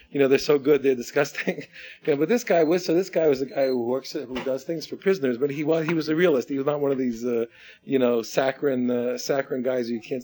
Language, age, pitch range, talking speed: English, 40-59, 135-185 Hz, 280 wpm